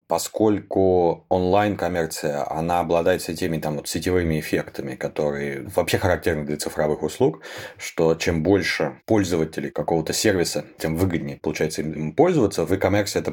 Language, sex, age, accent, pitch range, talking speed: Russian, male, 30-49, native, 80-100 Hz, 115 wpm